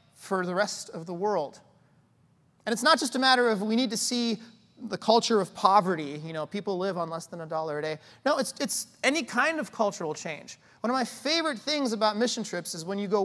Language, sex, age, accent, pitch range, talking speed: English, male, 30-49, American, 155-230 Hz, 235 wpm